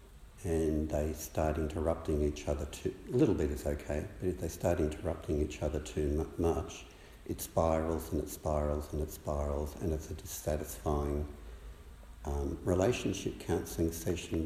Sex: male